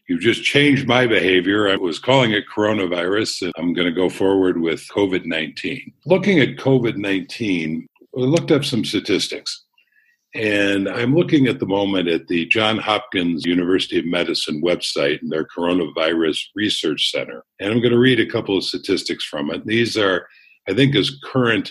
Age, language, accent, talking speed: 50-69, English, American, 170 wpm